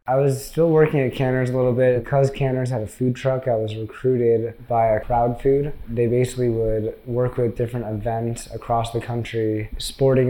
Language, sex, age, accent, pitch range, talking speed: English, male, 20-39, American, 110-125 Hz, 190 wpm